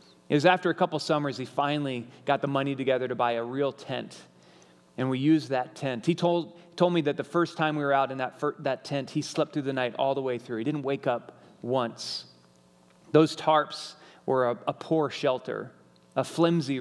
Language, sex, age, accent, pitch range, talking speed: English, male, 30-49, American, 125-155 Hz, 220 wpm